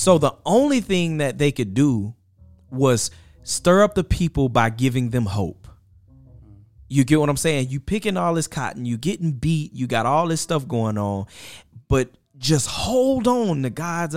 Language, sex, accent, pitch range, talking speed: English, male, American, 115-155 Hz, 180 wpm